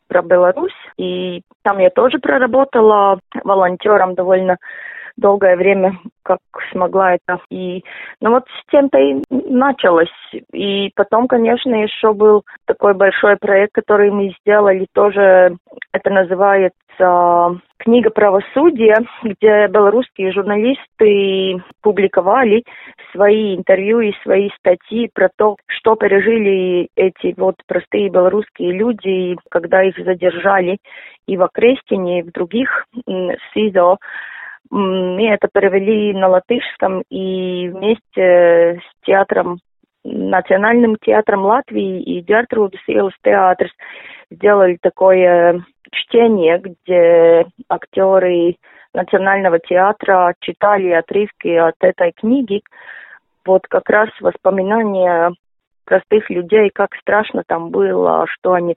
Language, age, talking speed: Russian, 20-39, 105 wpm